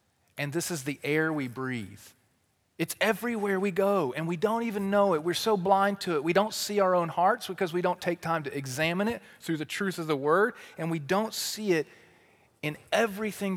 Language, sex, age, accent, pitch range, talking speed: English, male, 40-59, American, 130-185 Hz, 215 wpm